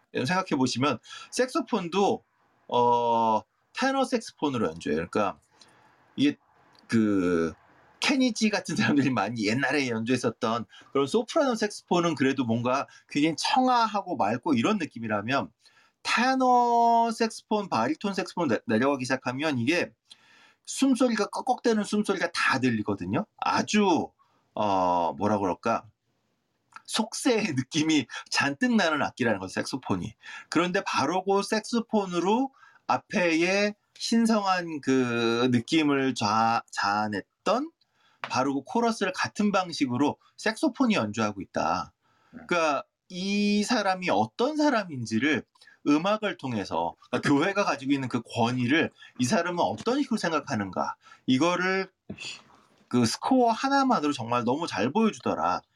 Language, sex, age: Korean, male, 30-49